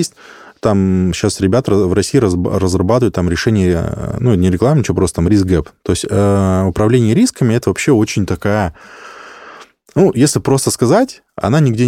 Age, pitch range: 20-39, 90-115 Hz